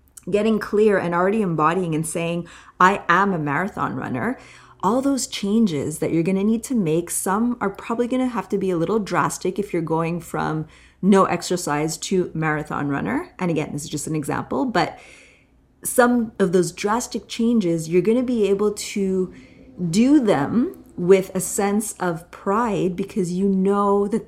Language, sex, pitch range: English, female, 170-225 Hz